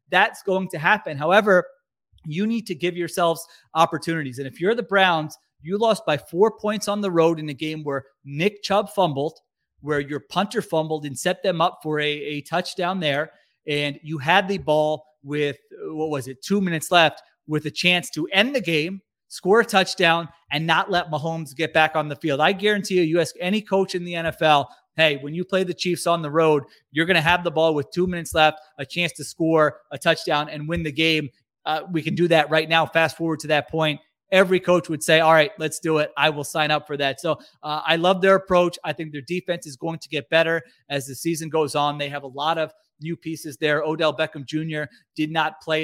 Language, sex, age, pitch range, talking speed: English, male, 30-49, 150-175 Hz, 230 wpm